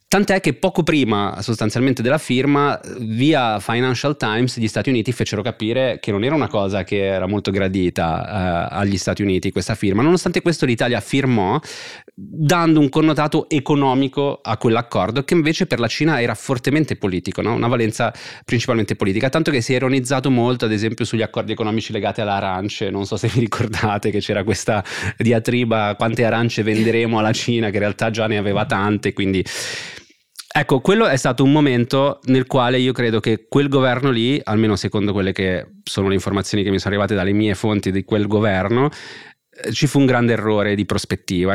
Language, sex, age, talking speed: Italian, male, 30-49, 180 wpm